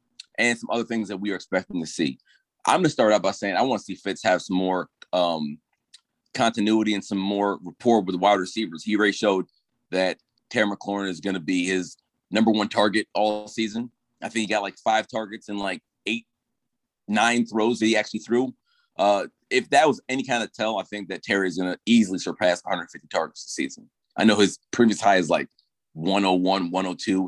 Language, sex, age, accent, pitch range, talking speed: English, male, 30-49, American, 95-115 Hz, 210 wpm